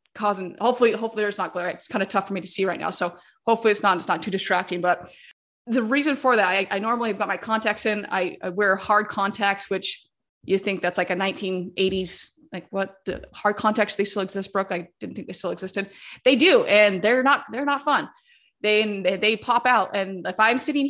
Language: English